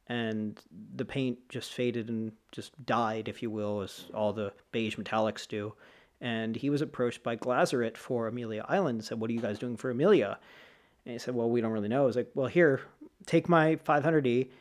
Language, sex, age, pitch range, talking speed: English, male, 40-59, 115-140 Hz, 210 wpm